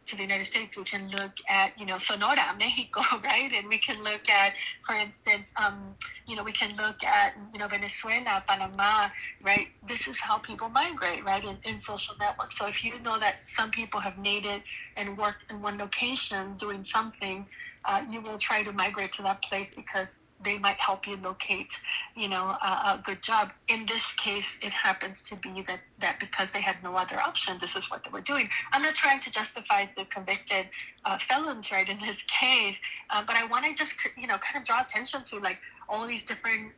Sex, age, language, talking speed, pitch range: female, 30-49, English, 215 wpm, 195-225 Hz